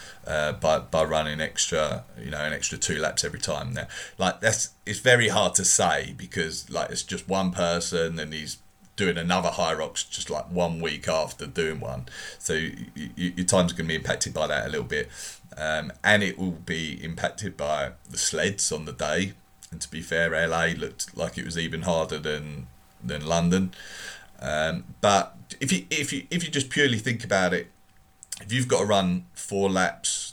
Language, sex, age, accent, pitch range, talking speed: English, male, 30-49, British, 80-95 Hz, 195 wpm